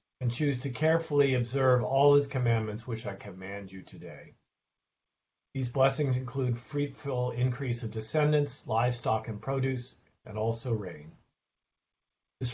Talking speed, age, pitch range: 130 wpm, 50-69, 115-140 Hz